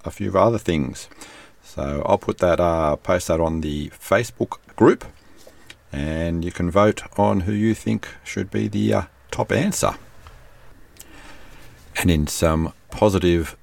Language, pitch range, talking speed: English, 75-95 Hz, 145 wpm